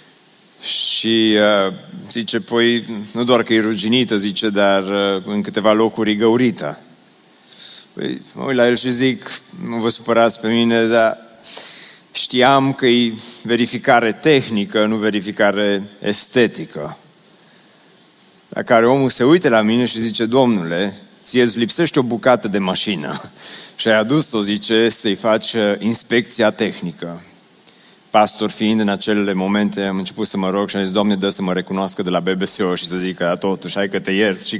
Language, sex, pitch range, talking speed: Romanian, male, 100-120 Hz, 160 wpm